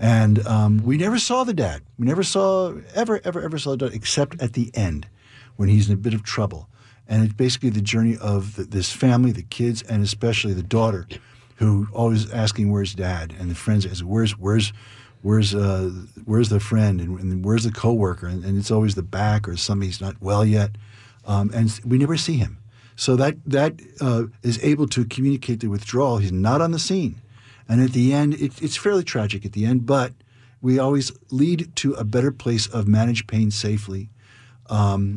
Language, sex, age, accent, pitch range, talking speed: English, male, 50-69, American, 105-130 Hz, 205 wpm